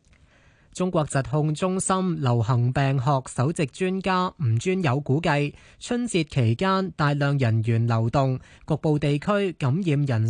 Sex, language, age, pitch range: male, Chinese, 20-39, 130-165 Hz